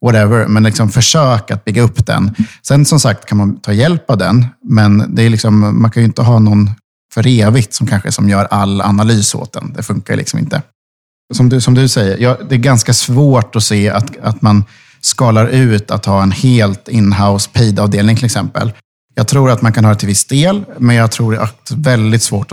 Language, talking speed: Swedish, 225 wpm